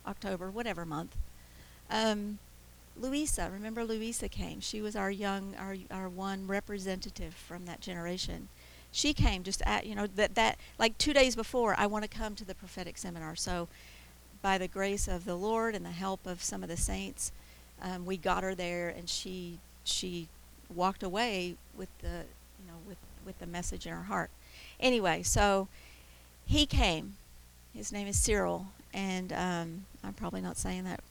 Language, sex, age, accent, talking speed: English, female, 50-69, American, 175 wpm